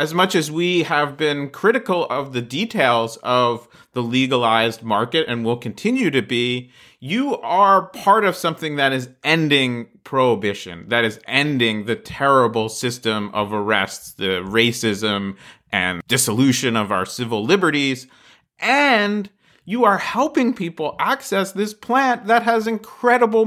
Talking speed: 140 wpm